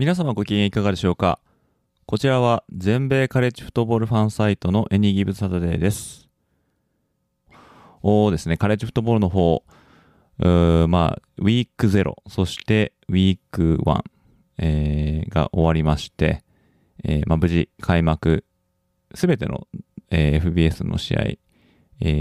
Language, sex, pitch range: Japanese, male, 80-100 Hz